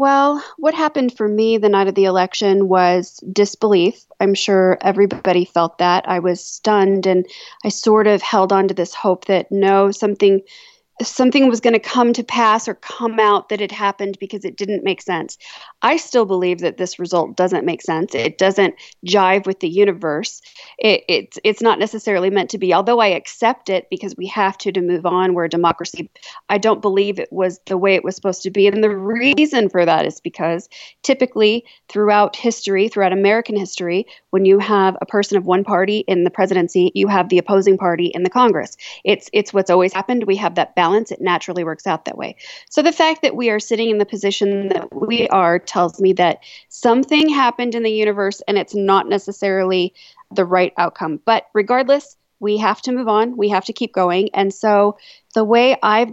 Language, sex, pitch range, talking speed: English, female, 185-225 Hz, 205 wpm